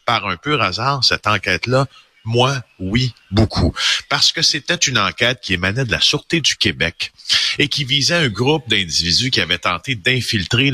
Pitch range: 95-125 Hz